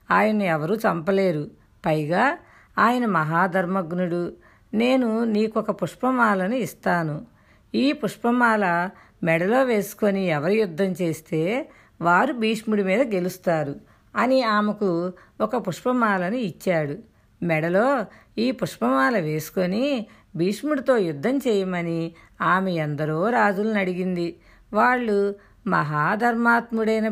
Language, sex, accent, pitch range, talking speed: Telugu, female, native, 175-230 Hz, 85 wpm